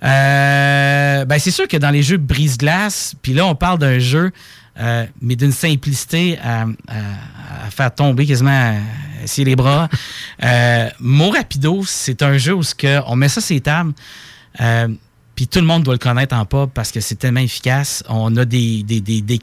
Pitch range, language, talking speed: 120-145 Hz, French, 190 wpm